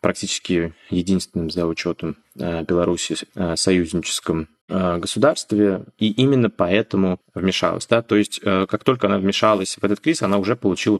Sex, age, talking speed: male, 20-39, 130 wpm